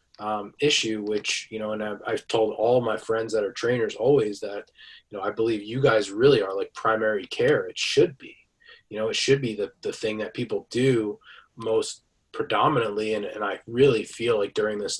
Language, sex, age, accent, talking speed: English, male, 20-39, American, 210 wpm